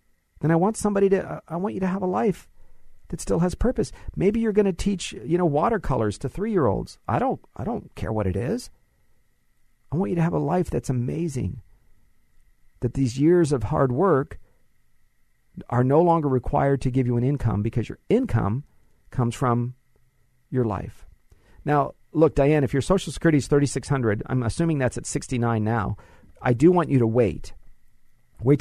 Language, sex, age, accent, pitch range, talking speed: English, male, 50-69, American, 120-150 Hz, 180 wpm